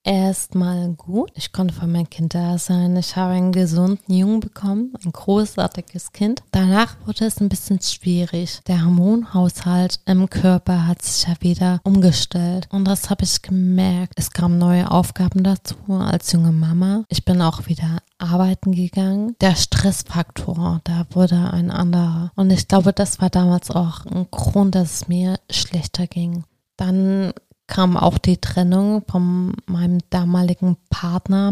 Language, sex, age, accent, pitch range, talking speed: German, female, 20-39, German, 175-190 Hz, 155 wpm